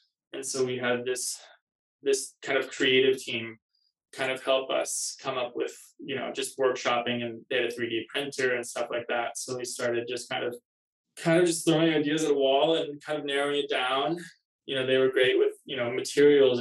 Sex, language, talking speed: male, English, 215 wpm